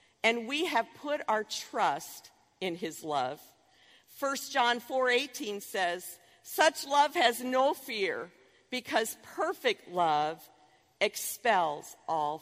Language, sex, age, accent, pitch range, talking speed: English, female, 50-69, American, 205-290 Hz, 110 wpm